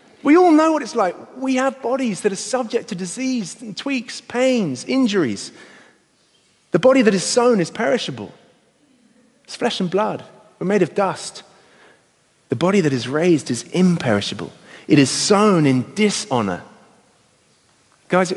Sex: male